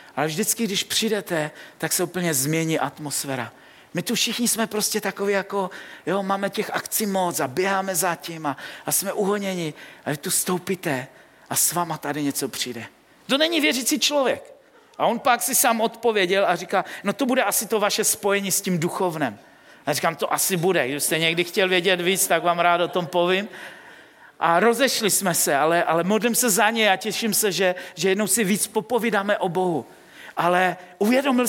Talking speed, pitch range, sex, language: 190 wpm, 180-235 Hz, male, Czech